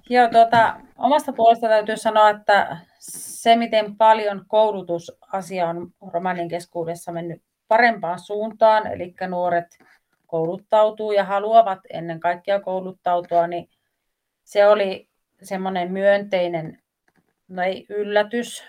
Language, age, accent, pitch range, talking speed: Finnish, 30-49, native, 170-205 Hz, 105 wpm